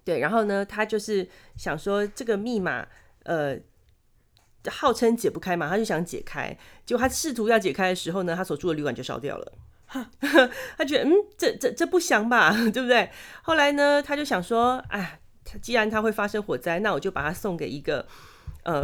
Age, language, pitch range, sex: 30-49, Chinese, 170-225 Hz, female